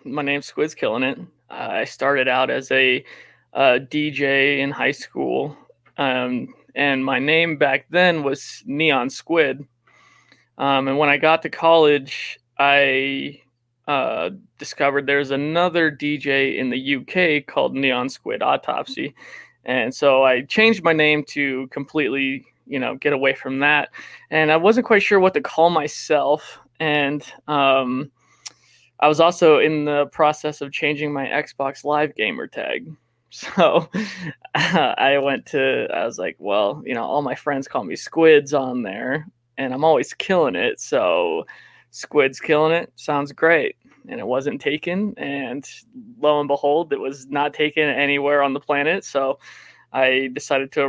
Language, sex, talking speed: English, male, 155 wpm